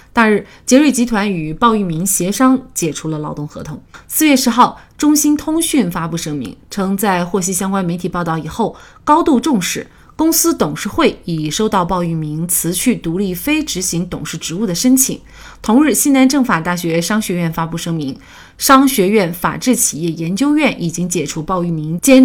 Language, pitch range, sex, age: Chinese, 170-240 Hz, female, 30-49